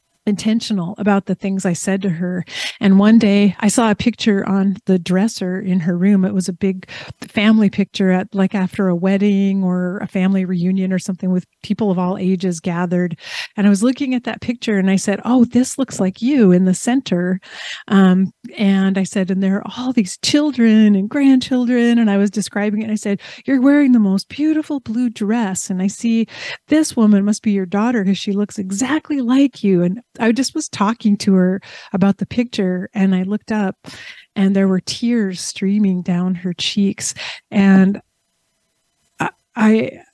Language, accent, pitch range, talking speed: English, American, 190-230 Hz, 190 wpm